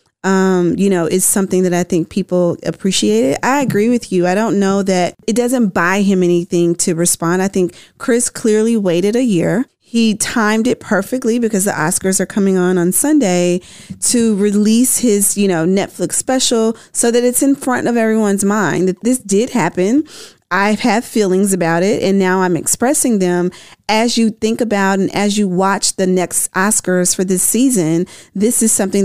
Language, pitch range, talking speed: English, 180-220 Hz, 190 wpm